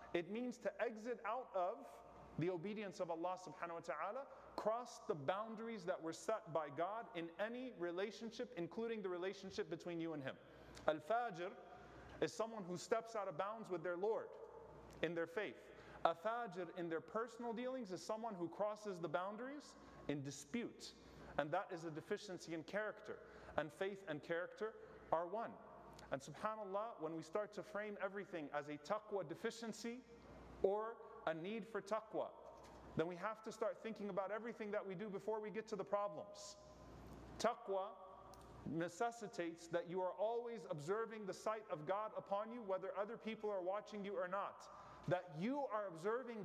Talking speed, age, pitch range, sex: 170 wpm, 30-49, 180-225 Hz, male